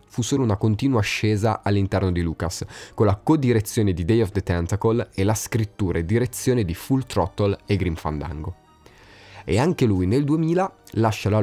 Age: 30-49